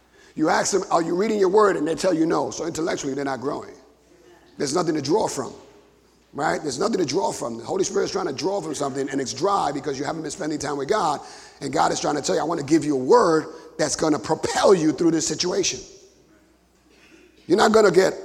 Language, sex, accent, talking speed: English, male, American, 250 wpm